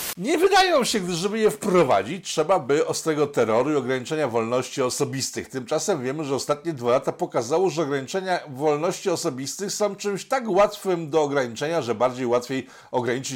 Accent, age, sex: native, 50-69, male